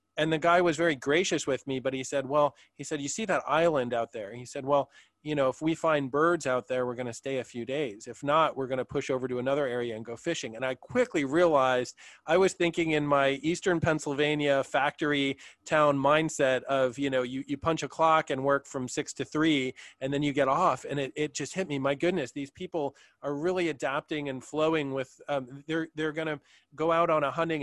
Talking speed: 240 wpm